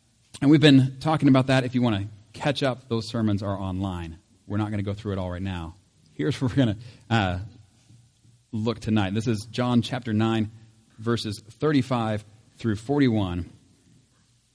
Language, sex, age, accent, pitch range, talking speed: English, male, 40-59, American, 110-130 Hz, 175 wpm